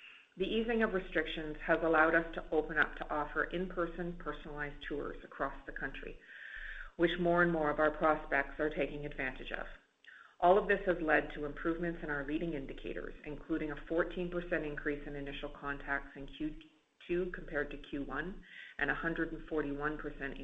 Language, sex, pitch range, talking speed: English, female, 145-165 Hz, 160 wpm